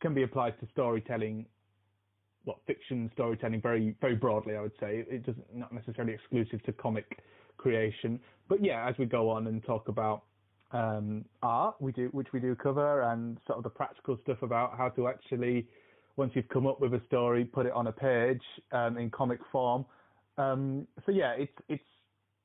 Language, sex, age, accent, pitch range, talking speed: English, male, 30-49, British, 115-135 Hz, 190 wpm